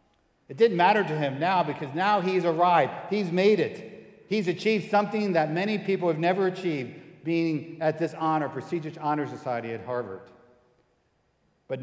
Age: 50-69